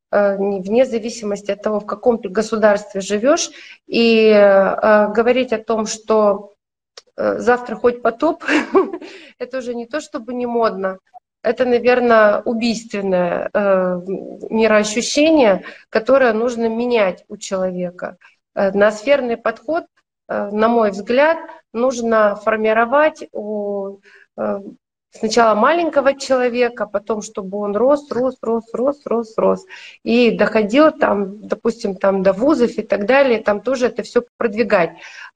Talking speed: 120 wpm